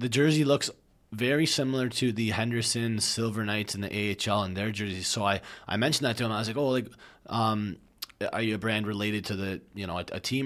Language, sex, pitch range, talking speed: English, male, 100-120 Hz, 235 wpm